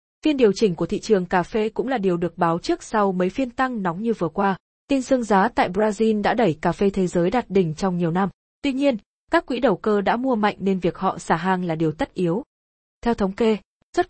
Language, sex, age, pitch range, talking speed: Vietnamese, female, 20-39, 185-240 Hz, 255 wpm